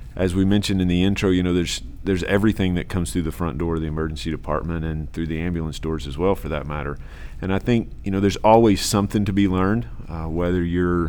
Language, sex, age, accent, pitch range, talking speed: English, male, 40-59, American, 75-95 Hz, 245 wpm